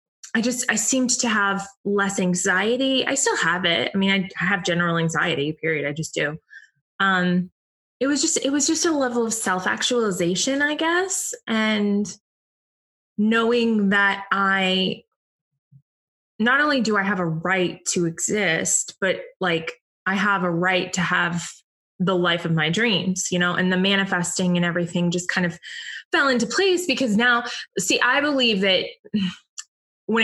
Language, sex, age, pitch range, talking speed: English, female, 20-39, 180-240 Hz, 155 wpm